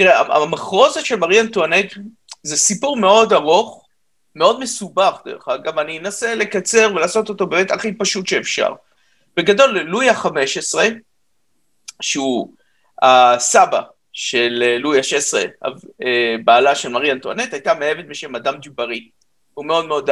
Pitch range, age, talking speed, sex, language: 150-220 Hz, 50-69, 125 wpm, male, Hebrew